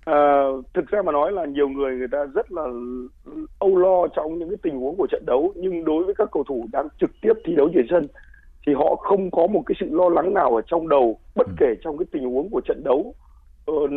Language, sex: Vietnamese, male